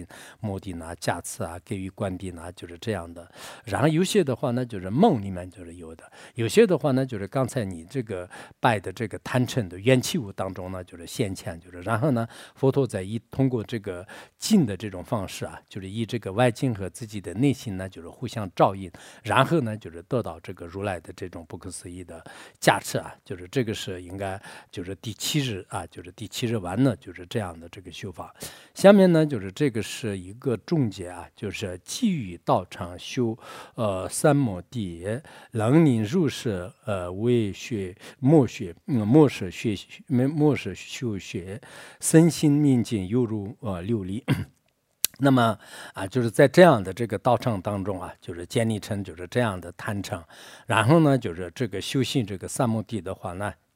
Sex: male